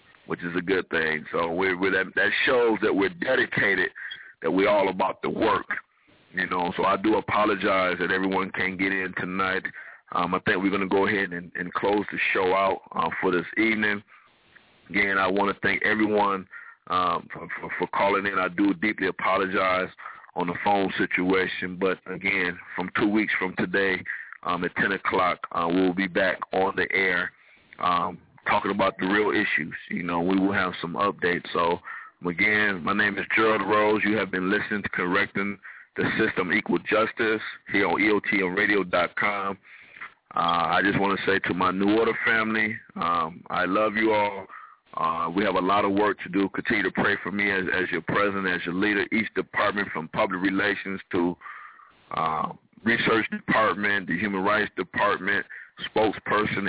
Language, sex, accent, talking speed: English, male, American, 180 wpm